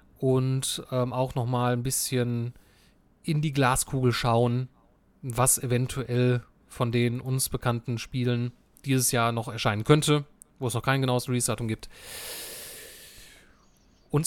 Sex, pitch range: male, 125-160 Hz